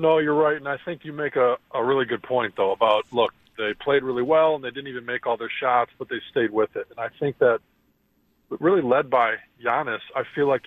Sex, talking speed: male, 245 wpm